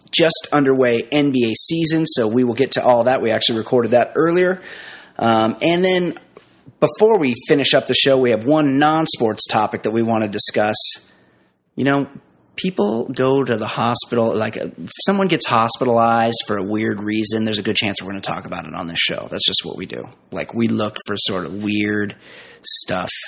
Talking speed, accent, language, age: 200 wpm, American, English, 30-49